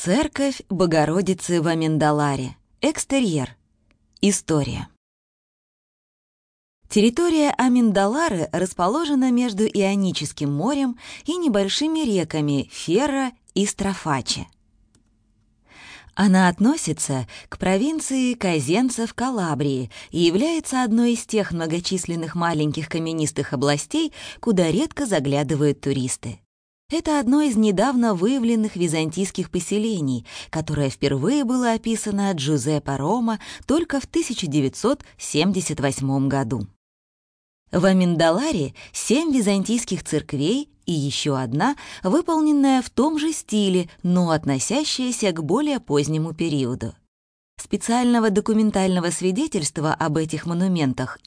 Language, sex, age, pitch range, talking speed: English, female, 20-39, 145-235 Hz, 95 wpm